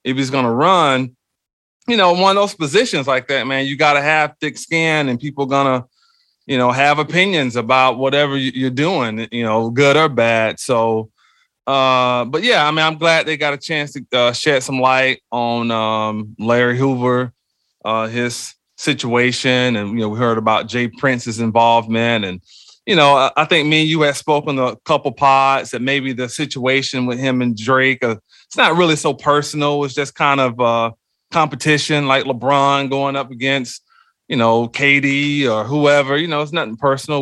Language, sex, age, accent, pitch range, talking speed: English, male, 30-49, American, 120-145 Hz, 185 wpm